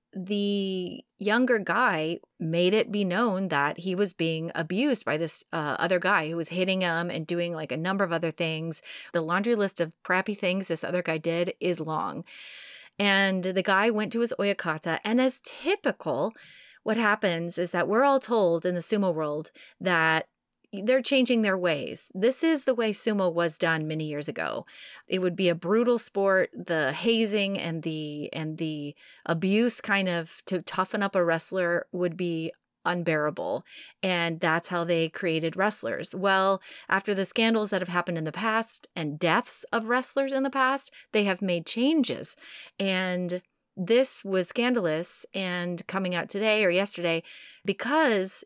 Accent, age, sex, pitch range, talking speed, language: American, 30-49, female, 165-210 Hz, 170 wpm, English